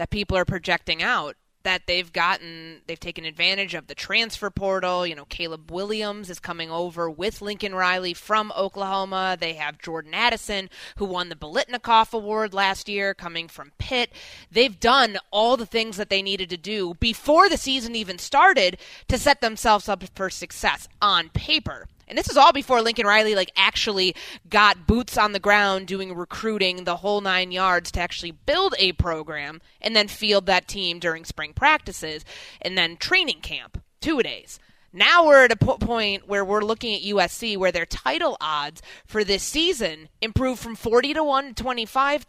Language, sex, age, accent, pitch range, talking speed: English, female, 20-39, American, 180-225 Hz, 175 wpm